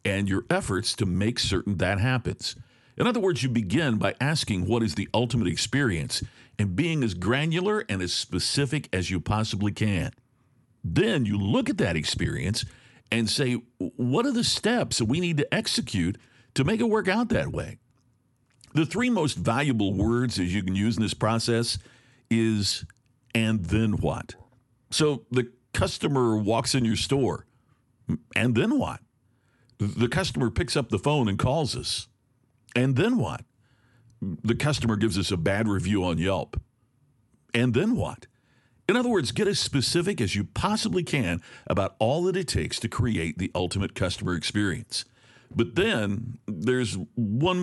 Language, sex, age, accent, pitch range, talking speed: English, male, 50-69, American, 105-130 Hz, 165 wpm